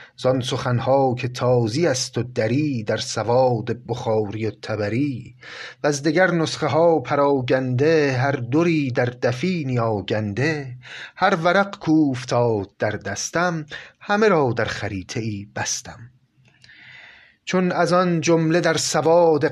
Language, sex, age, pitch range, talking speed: Persian, male, 30-49, 110-150 Hz, 125 wpm